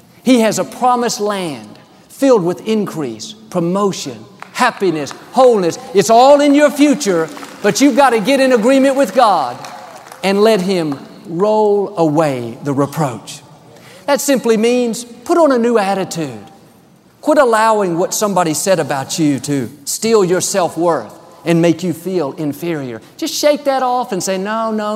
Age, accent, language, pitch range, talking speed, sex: 50-69, American, English, 175-235 Hz, 155 wpm, male